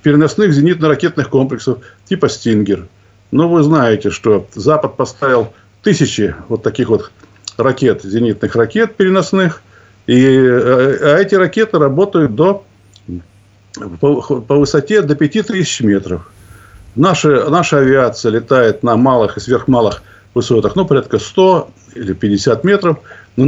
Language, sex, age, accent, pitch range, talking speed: Russian, male, 50-69, native, 105-155 Hz, 125 wpm